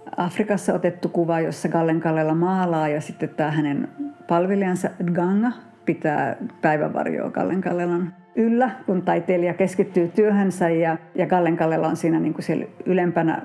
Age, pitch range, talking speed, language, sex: 50-69, 160-185 Hz, 120 wpm, Finnish, female